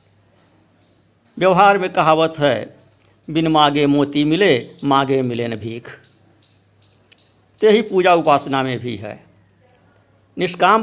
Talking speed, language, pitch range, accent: 105 wpm, Hindi, 110-160 Hz, native